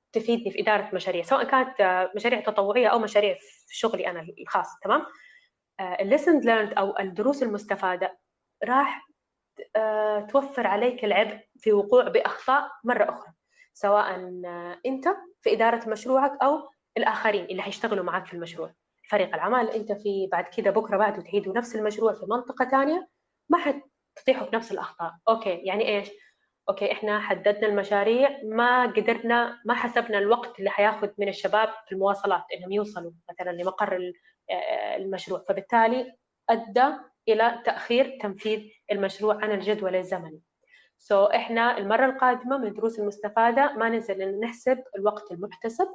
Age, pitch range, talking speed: 20-39, 195-240 Hz, 135 wpm